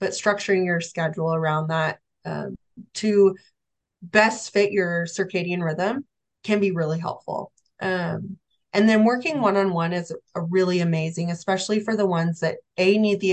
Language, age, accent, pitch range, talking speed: English, 20-39, American, 170-200 Hz, 155 wpm